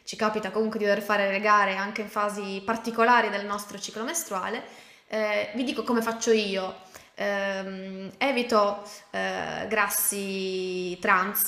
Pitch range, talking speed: 195-230 Hz, 140 wpm